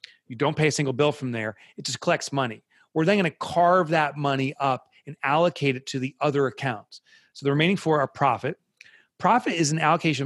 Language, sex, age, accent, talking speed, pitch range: English, male, 30-49, American, 215 wpm, 135-175 Hz